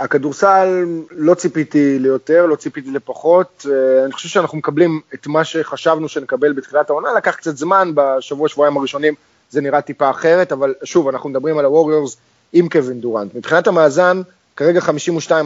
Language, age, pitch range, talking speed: Hebrew, 20-39, 140-170 Hz, 150 wpm